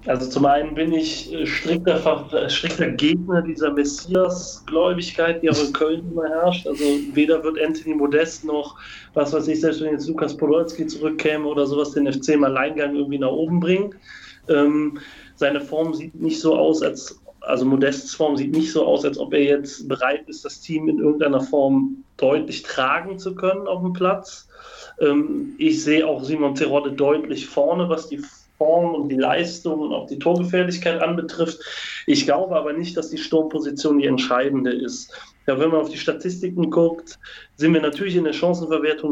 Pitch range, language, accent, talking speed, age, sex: 140-170 Hz, German, German, 175 wpm, 30-49, male